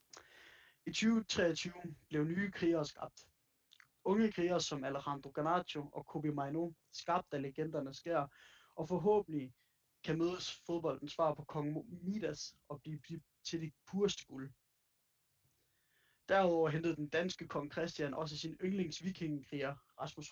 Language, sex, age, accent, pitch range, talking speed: Danish, male, 20-39, native, 145-170 Hz, 125 wpm